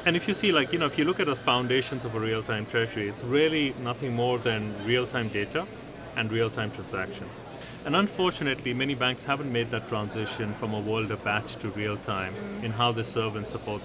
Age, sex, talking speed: 30-49, male, 225 wpm